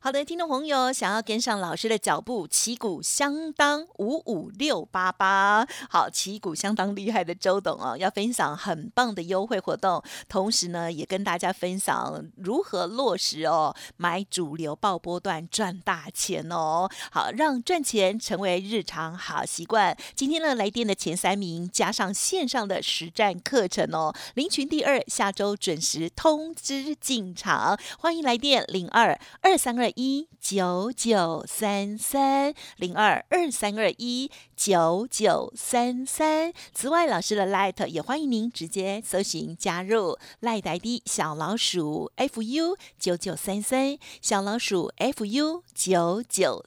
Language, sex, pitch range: Chinese, female, 185-260 Hz